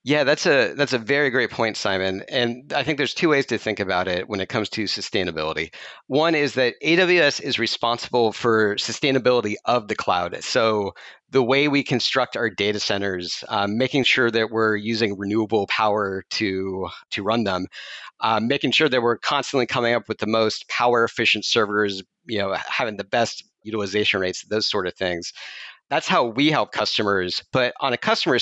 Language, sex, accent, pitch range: English, male, American, 105-130 Hz